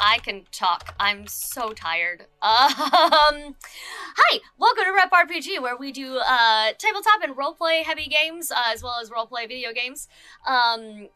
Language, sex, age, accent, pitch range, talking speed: English, female, 10-29, American, 215-295 Hz, 155 wpm